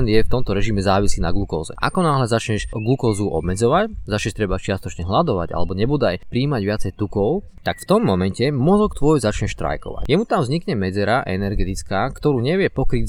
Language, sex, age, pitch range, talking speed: Slovak, male, 20-39, 100-140 Hz, 180 wpm